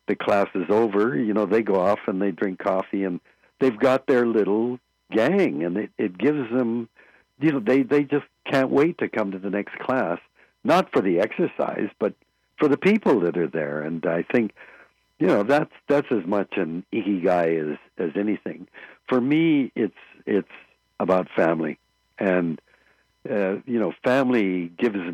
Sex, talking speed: male, 180 wpm